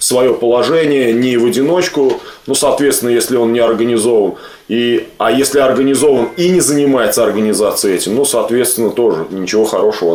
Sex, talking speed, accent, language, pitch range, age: male, 140 wpm, native, Russian, 130-165 Hz, 20-39